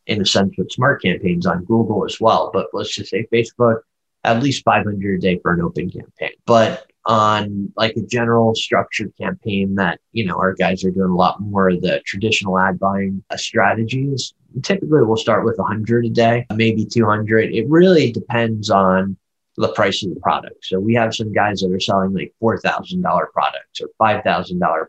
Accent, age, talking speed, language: American, 30-49, 190 wpm, English